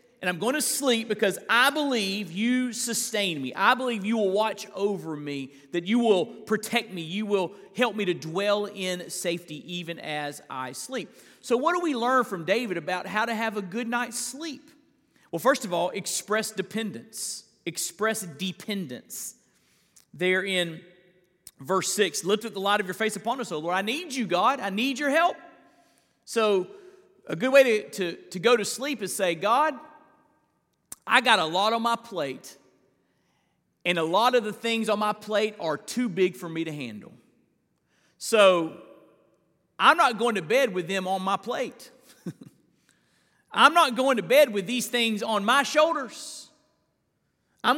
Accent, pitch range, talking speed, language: American, 185-250 Hz, 175 wpm, English